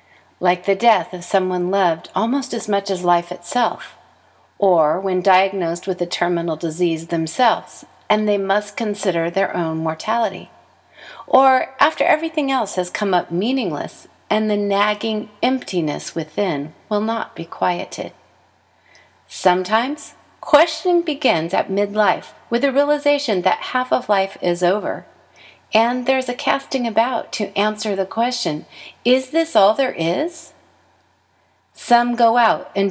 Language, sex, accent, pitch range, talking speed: English, female, American, 180-240 Hz, 140 wpm